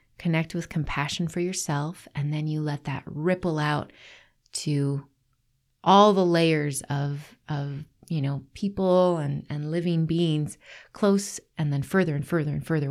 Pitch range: 145-175 Hz